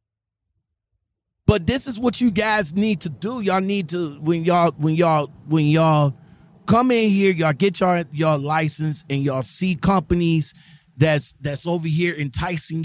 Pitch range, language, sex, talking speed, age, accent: 145-205 Hz, English, male, 165 wpm, 30-49, American